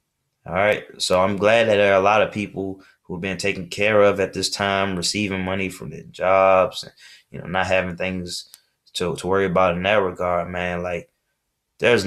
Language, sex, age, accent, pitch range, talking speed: English, male, 20-39, American, 85-100 Hz, 200 wpm